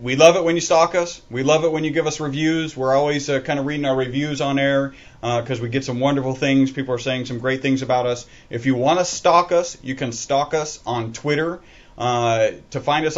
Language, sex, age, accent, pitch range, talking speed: English, male, 30-49, American, 130-155 Hz, 255 wpm